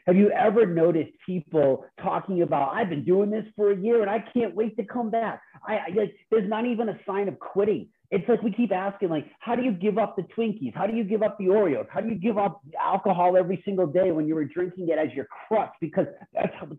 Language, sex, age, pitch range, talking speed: English, male, 40-59, 175-225 Hz, 250 wpm